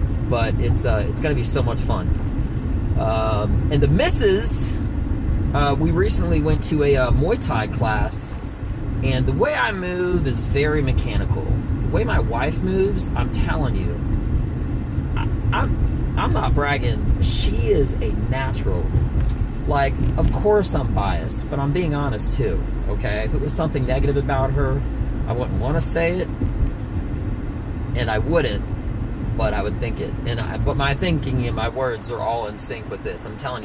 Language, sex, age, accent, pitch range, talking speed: English, male, 30-49, American, 100-130 Hz, 175 wpm